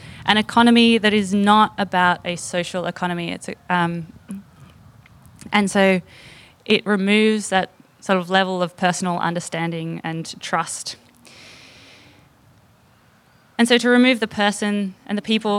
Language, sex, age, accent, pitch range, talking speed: English, female, 20-39, Australian, 180-215 Hz, 130 wpm